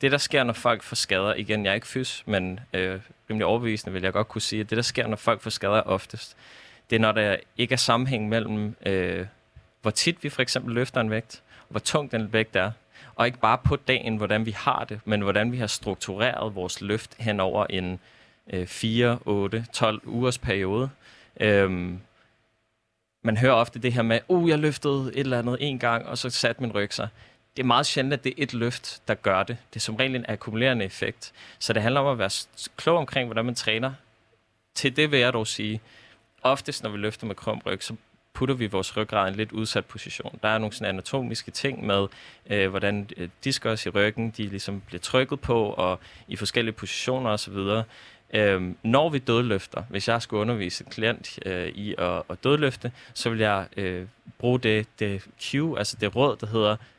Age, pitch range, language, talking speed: 20-39, 105-125 Hz, Danish, 205 wpm